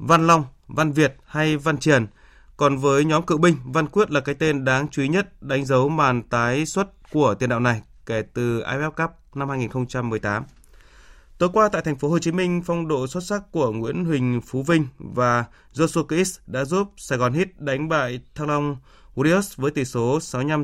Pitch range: 125-160 Hz